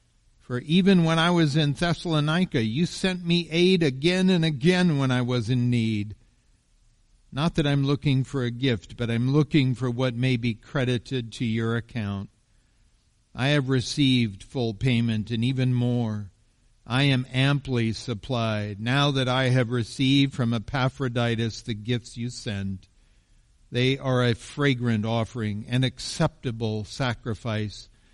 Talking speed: 145 wpm